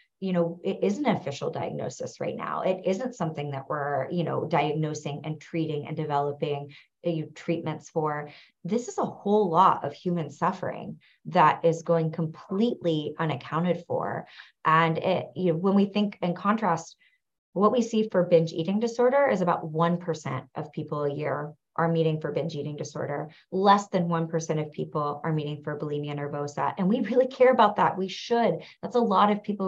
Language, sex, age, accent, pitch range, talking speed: English, female, 30-49, American, 160-200 Hz, 185 wpm